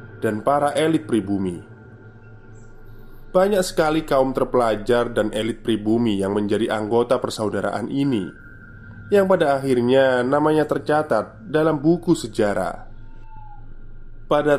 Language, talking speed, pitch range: Indonesian, 105 wpm, 110-140 Hz